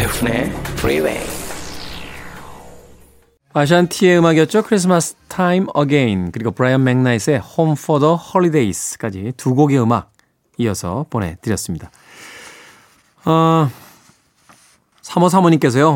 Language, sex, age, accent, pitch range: Korean, male, 20-39, native, 115-165 Hz